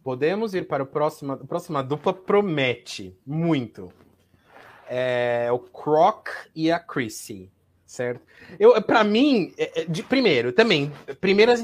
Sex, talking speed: male, 125 wpm